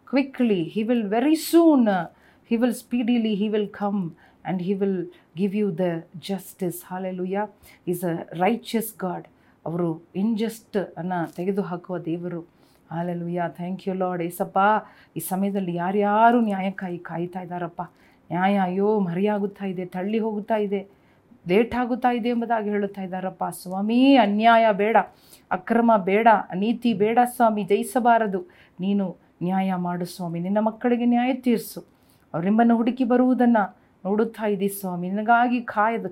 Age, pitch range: 40-59, 180-225 Hz